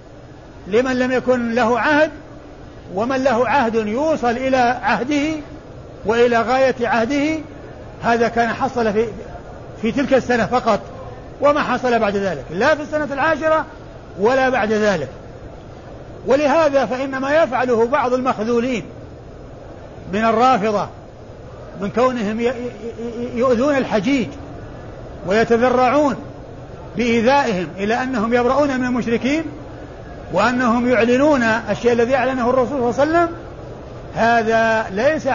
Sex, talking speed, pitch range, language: male, 110 wpm, 220-265 Hz, Arabic